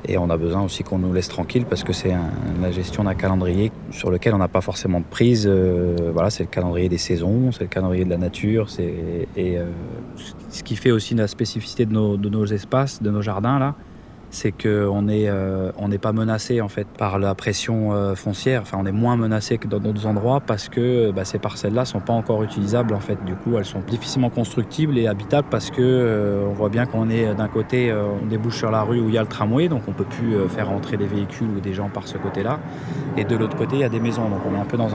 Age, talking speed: 20-39, 260 wpm